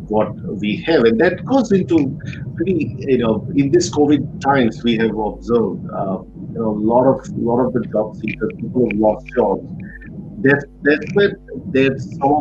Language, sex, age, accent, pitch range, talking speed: English, male, 50-69, Indian, 110-150 Hz, 185 wpm